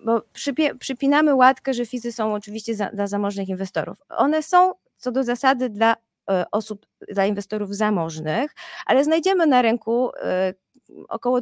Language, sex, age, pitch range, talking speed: Polish, female, 20-39, 200-260 Hz, 135 wpm